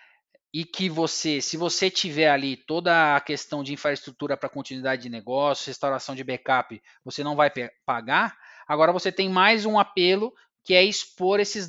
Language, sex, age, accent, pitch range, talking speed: Portuguese, male, 20-39, Brazilian, 140-200 Hz, 175 wpm